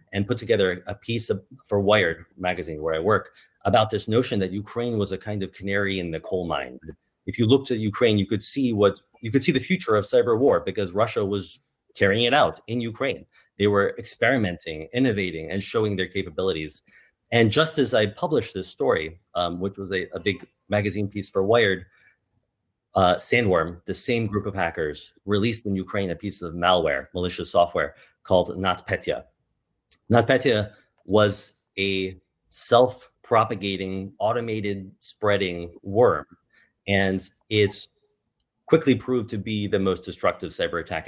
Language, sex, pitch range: English, male, 95-115 Hz